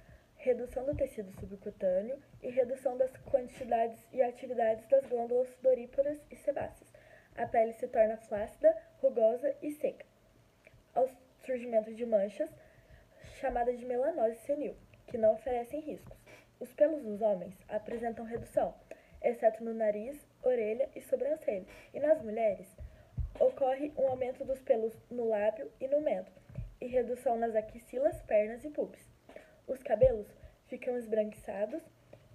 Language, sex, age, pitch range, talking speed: Portuguese, female, 10-29, 225-275 Hz, 130 wpm